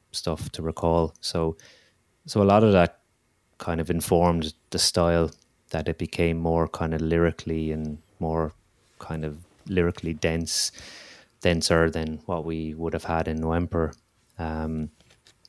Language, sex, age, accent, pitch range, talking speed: English, male, 20-39, Irish, 80-90 Hz, 145 wpm